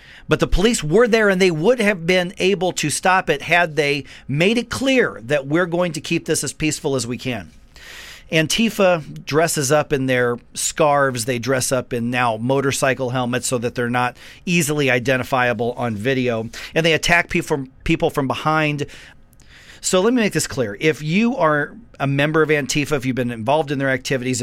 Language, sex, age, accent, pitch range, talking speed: English, male, 40-59, American, 125-155 Hz, 190 wpm